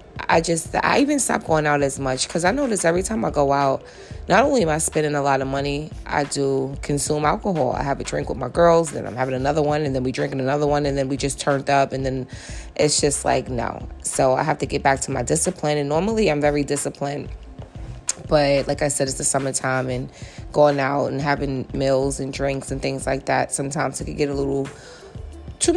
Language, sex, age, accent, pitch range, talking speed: English, female, 20-39, American, 135-155 Hz, 235 wpm